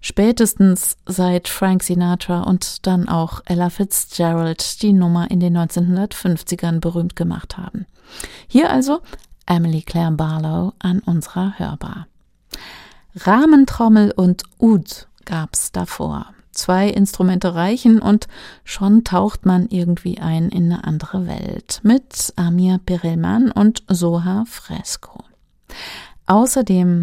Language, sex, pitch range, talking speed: German, female, 175-215 Hz, 110 wpm